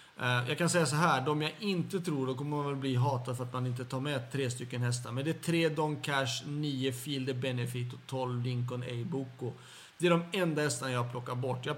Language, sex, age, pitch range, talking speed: Swedish, male, 40-59, 130-160 Hz, 240 wpm